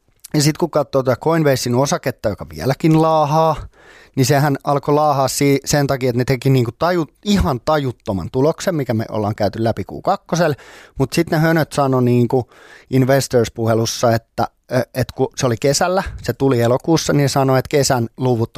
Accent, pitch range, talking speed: native, 120-150 Hz, 170 wpm